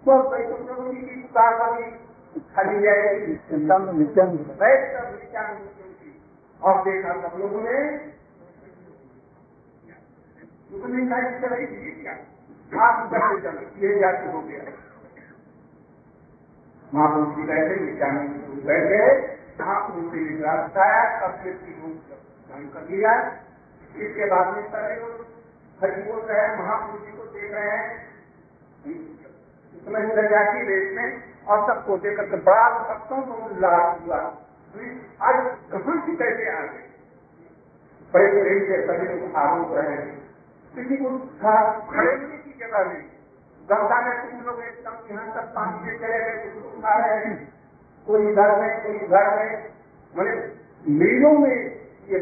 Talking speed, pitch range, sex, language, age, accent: 75 wpm, 185-235 Hz, male, Hindi, 50-69, native